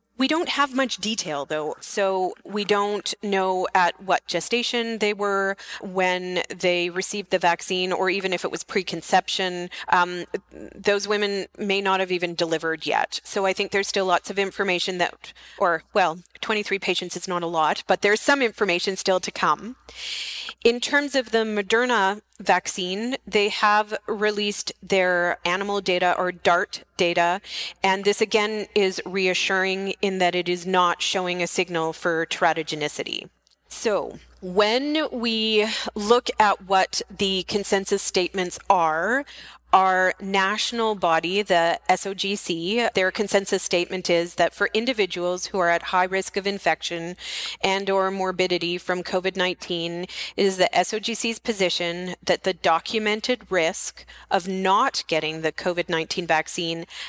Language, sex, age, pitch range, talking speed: English, female, 30-49, 175-205 Hz, 145 wpm